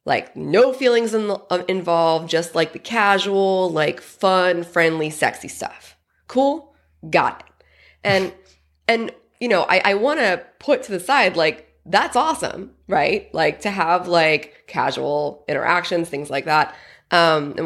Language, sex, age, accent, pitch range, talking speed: English, female, 20-39, American, 160-210 Hz, 145 wpm